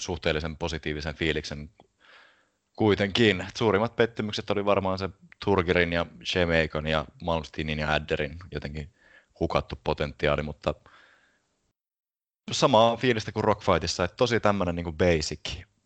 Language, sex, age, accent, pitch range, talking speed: English, male, 30-49, Finnish, 75-90 Hz, 105 wpm